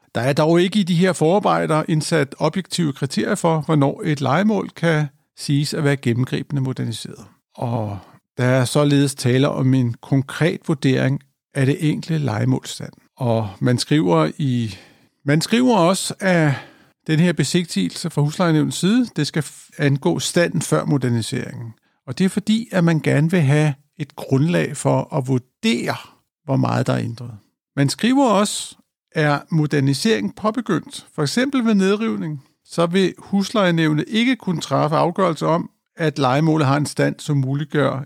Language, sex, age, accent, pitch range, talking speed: Danish, male, 50-69, native, 135-175 Hz, 155 wpm